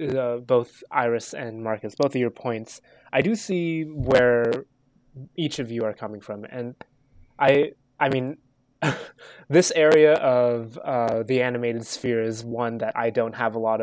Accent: American